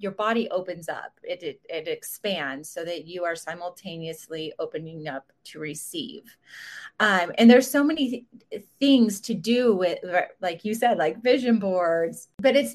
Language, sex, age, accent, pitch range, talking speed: English, female, 30-49, American, 180-240 Hz, 165 wpm